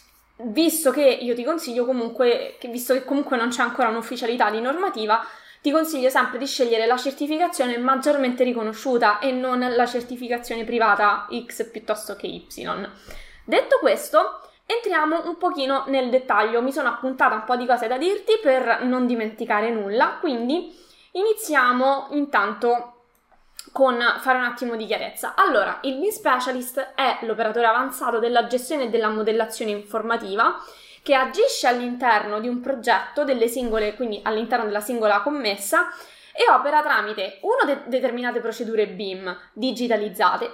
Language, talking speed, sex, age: Italian, 145 wpm, female, 20-39